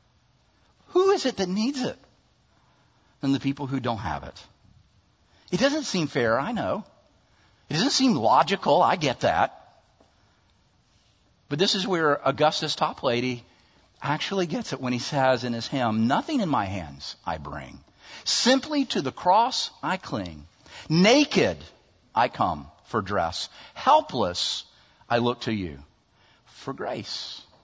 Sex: male